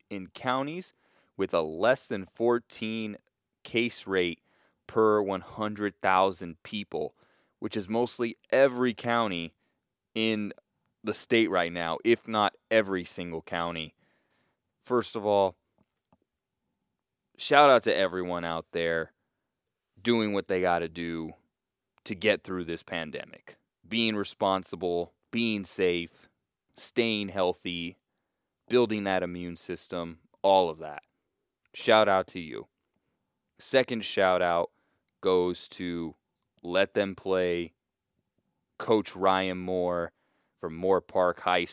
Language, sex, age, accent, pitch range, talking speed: English, male, 20-39, American, 85-105 Hz, 115 wpm